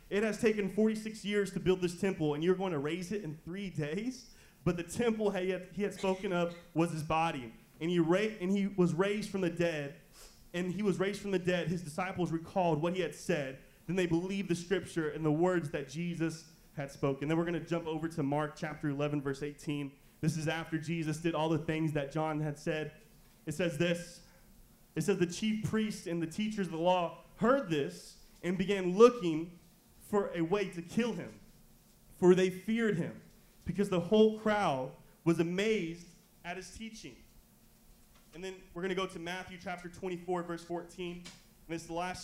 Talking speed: 205 wpm